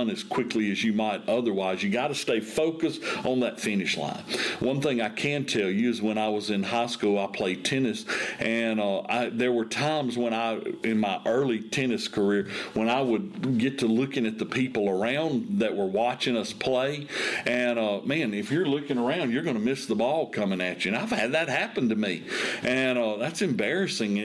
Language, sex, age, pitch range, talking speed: English, male, 50-69, 115-150 Hz, 210 wpm